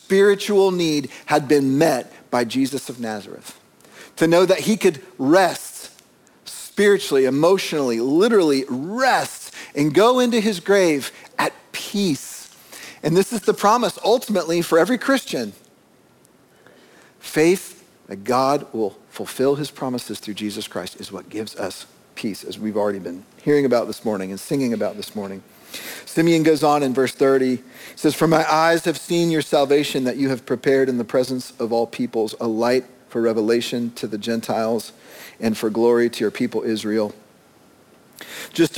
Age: 50-69